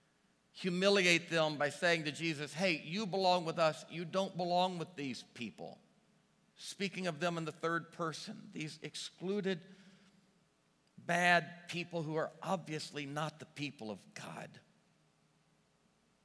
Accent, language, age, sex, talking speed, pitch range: American, English, 50-69, male, 135 wpm, 140-175 Hz